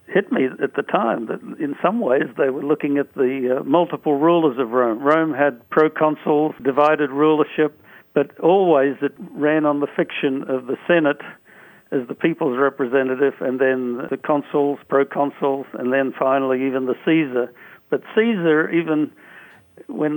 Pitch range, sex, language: 135-160 Hz, male, English